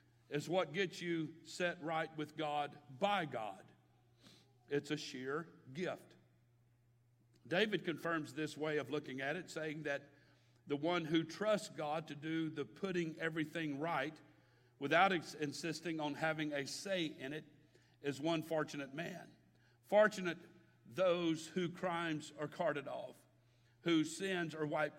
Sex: male